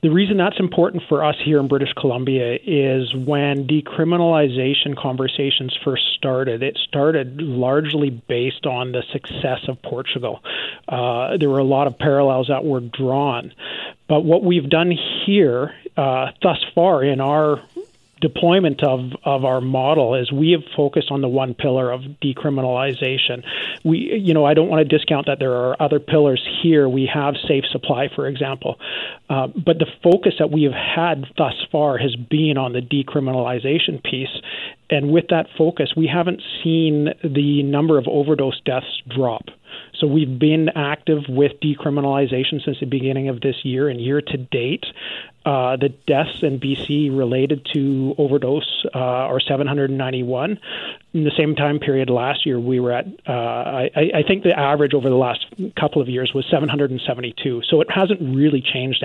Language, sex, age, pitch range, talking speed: English, male, 40-59, 130-155 Hz, 170 wpm